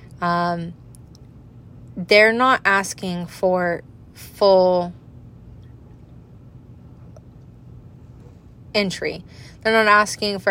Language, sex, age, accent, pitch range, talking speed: English, female, 20-39, American, 160-190 Hz, 65 wpm